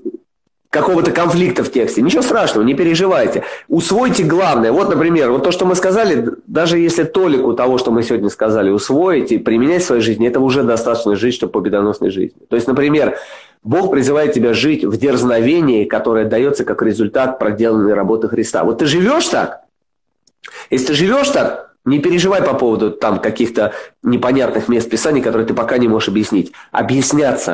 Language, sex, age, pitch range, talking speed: Russian, male, 30-49, 120-170 Hz, 170 wpm